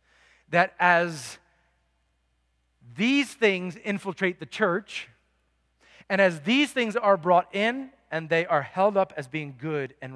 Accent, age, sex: American, 40-59, male